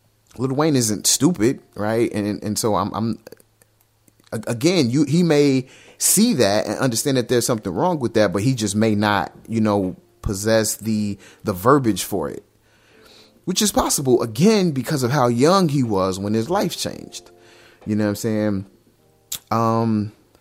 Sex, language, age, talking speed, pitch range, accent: male, English, 30-49, 170 wpm, 105-130 Hz, American